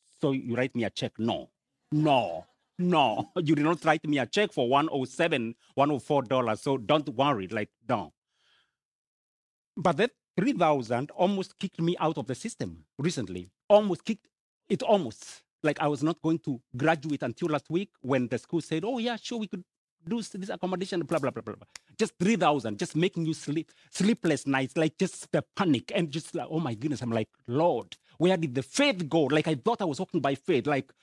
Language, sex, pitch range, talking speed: English, male, 140-195 Hz, 195 wpm